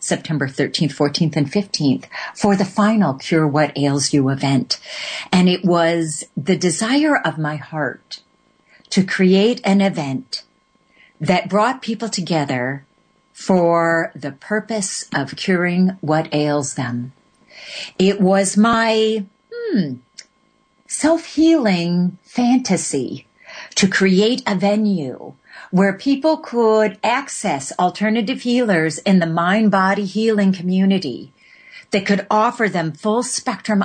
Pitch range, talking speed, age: 170-235 Hz, 110 wpm, 50-69